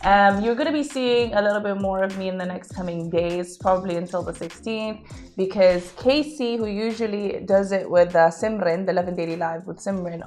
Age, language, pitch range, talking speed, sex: 20-39, Arabic, 175-215 Hz, 210 wpm, female